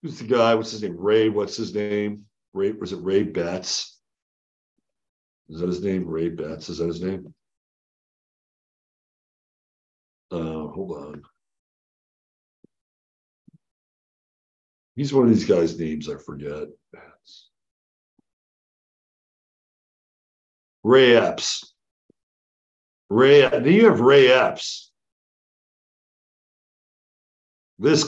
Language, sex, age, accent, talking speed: English, male, 60-79, American, 95 wpm